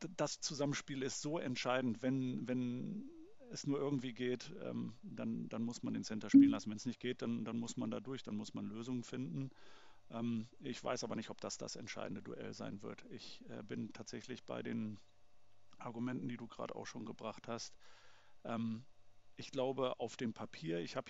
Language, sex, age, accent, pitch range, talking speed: German, male, 40-59, German, 110-130 Hz, 185 wpm